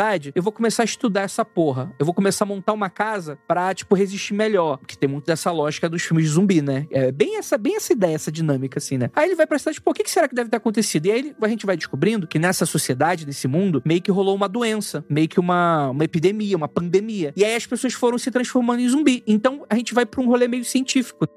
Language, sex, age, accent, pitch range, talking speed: Portuguese, male, 20-39, Brazilian, 175-235 Hz, 260 wpm